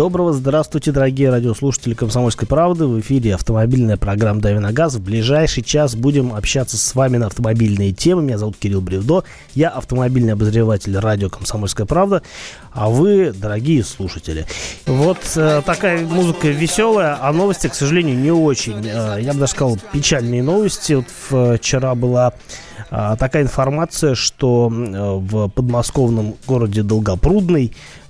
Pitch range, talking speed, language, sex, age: 115-150 Hz, 130 wpm, Russian, male, 20-39